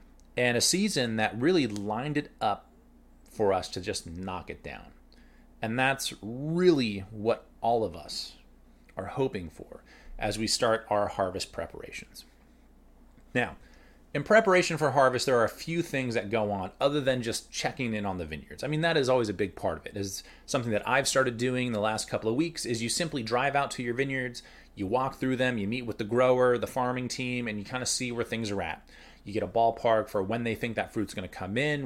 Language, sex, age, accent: English, male, 30-49, American